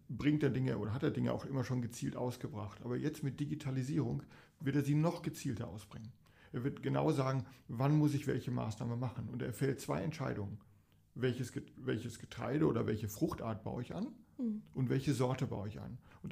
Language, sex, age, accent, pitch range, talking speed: German, male, 40-59, German, 115-145 Hz, 190 wpm